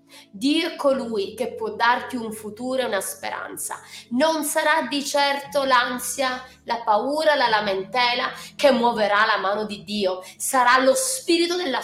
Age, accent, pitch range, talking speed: 20-39, native, 245-305 Hz, 150 wpm